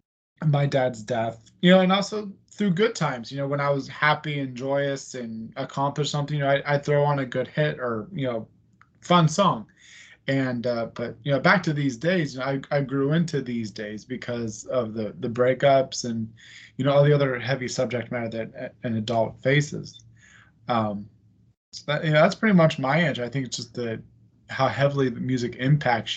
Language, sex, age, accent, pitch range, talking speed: English, male, 20-39, American, 120-150 Hz, 205 wpm